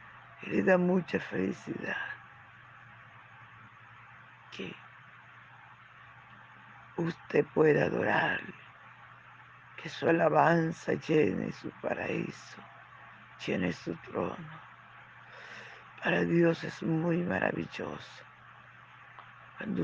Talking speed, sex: 70 wpm, female